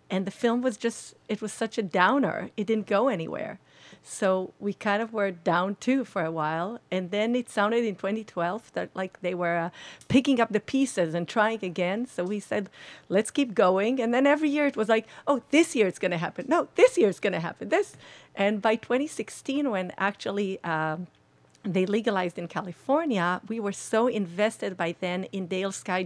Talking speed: 205 wpm